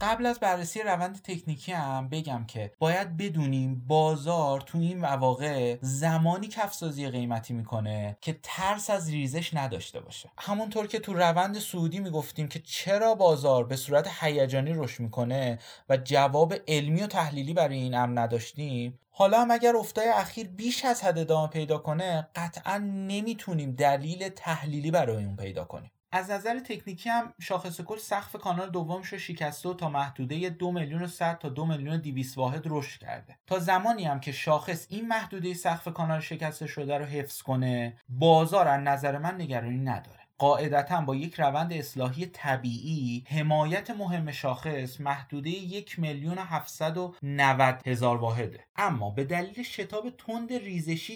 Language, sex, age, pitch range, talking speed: Persian, male, 30-49, 135-180 Hz, 155 wpm